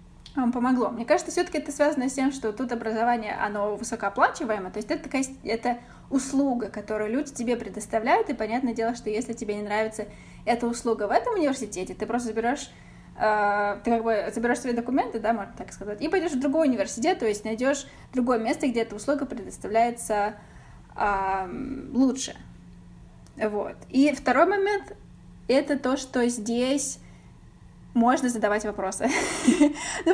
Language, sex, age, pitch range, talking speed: Russian, female, 20-39, 220-290 Hz, 145 wpm